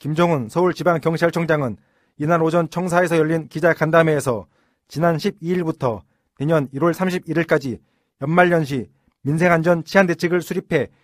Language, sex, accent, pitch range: Korean, male, native, 150-180 Hz